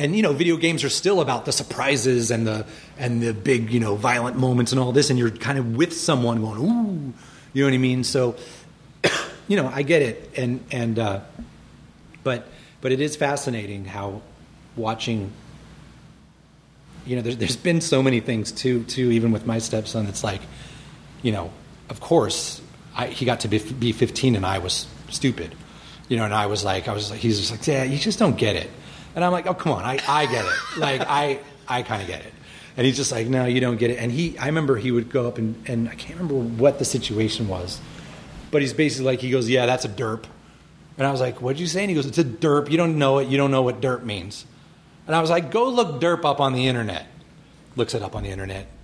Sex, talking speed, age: male, 235 wpm, 30-49